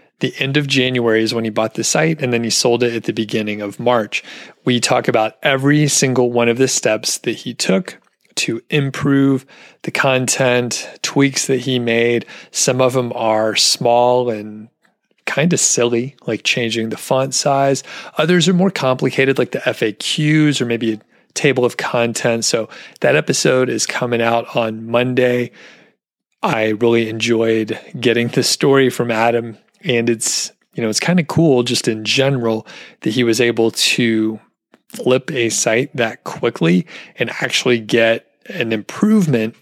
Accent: American